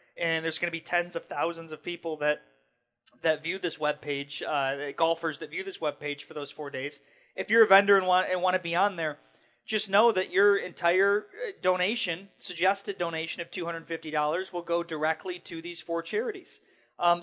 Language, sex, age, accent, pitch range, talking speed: English, male, 30-49, American, 155-180 Hz, 200 wpm